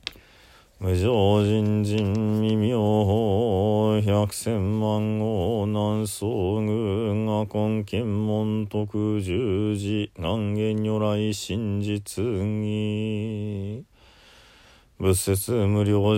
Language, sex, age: Japanese, male, 40-59